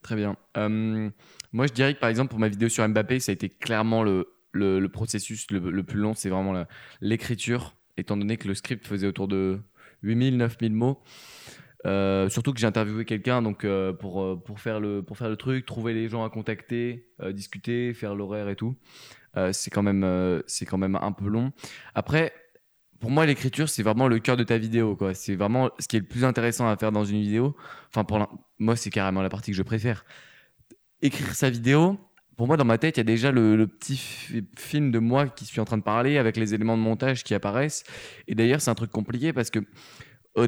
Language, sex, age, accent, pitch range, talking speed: French, male, 20-39, French, 105-130 Hz, 230 wpm